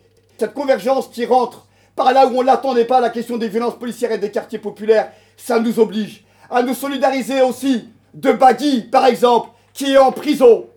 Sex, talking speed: male, 190 wpm